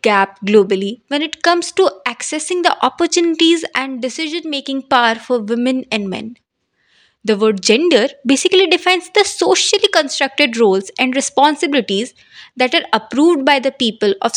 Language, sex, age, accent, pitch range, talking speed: English, female, 20-39, Indian, 225-330 Hz, 140 wpm